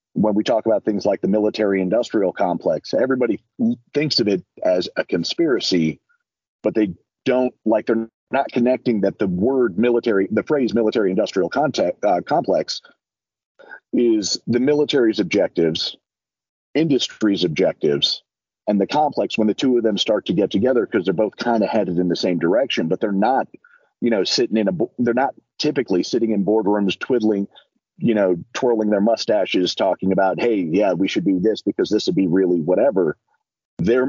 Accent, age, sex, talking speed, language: American, 40-59, male, 170 wpm, English